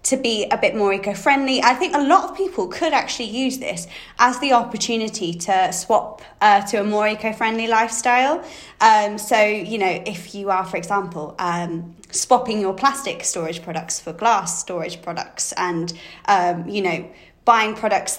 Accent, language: British, English